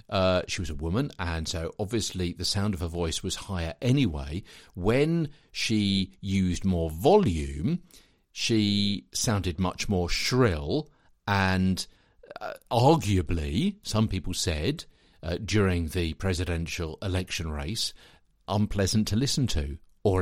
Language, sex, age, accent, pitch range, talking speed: English, male, 50-69, British, 85-105 Hz, 130 wpm